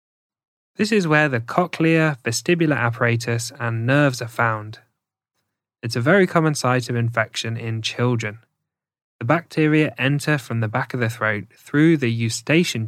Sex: male